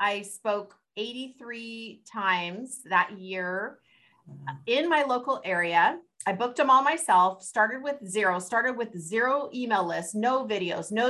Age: 30-49